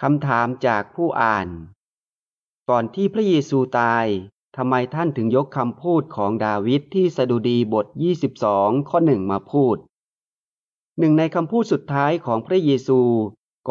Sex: male